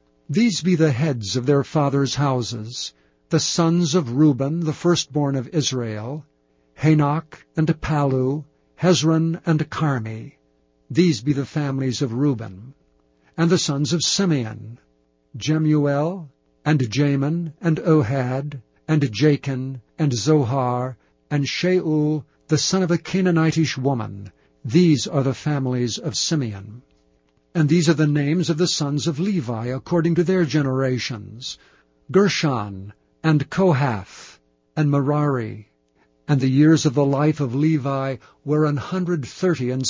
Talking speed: 130 wpm